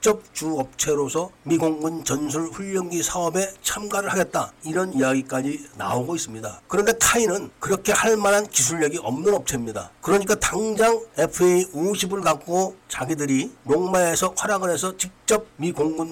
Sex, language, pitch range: male, Korean, 140-185 Hz